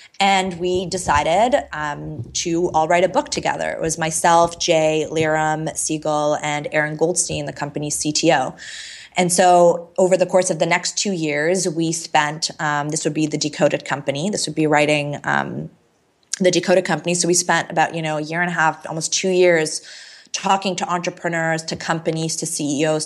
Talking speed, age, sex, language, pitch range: 180 wpm, 20-39, female, English, 155-175 Hz